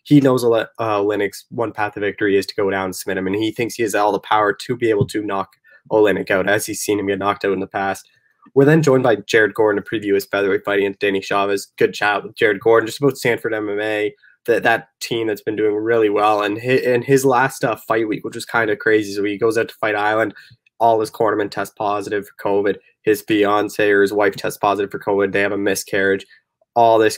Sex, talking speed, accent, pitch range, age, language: male, 250 wpm, American, 105-125 Hz, 20-39, English